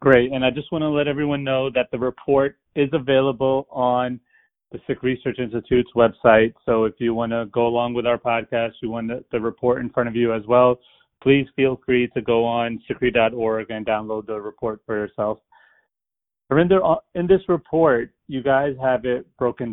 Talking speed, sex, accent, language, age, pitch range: 190 wpm, male, American, English, 30-49, 115-130 Hz